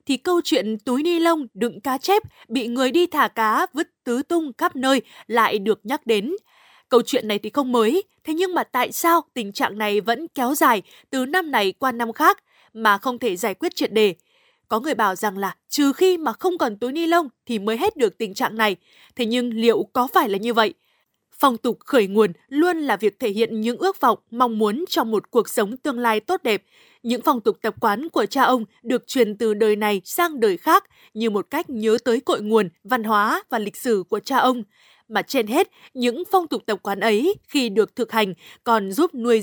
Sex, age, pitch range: female, 20-39, 220-310 Hz